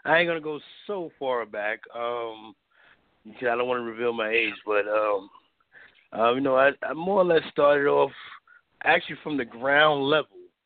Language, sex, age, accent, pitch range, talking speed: English, male, 30-49, American, 110-130 Hz, 175 wpm